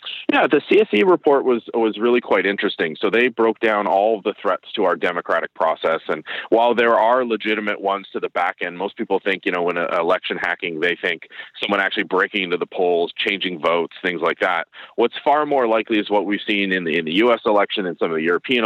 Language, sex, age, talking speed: English, male, 30-49, 230 wpm